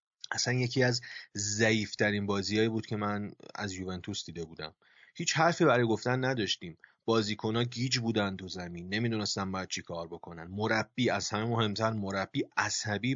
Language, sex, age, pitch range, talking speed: Persian, male, 30-49, 100-120 Hz, 150 wpm